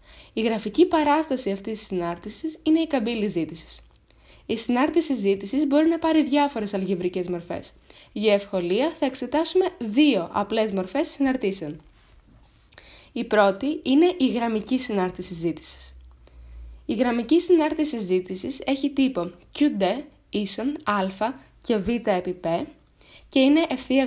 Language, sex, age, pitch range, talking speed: Greek, female, 20-39, 190-290 Hz, 115 wpm